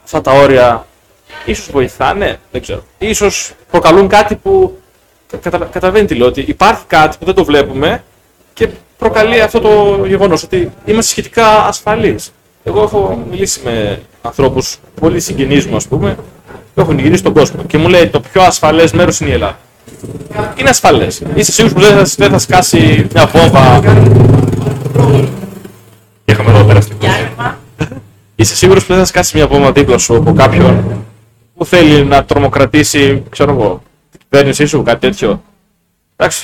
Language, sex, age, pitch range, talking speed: Greek, male, 20-39, 125-185 Hz, 150 wpm